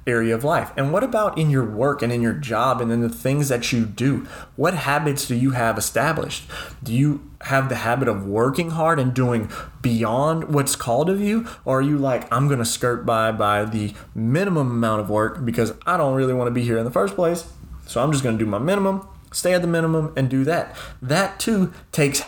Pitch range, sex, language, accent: 115-145 Hz, male, English, American